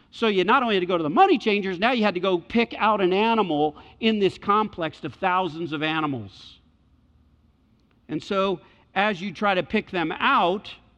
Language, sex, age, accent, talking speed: English, male, 50-69, American, 195 wpm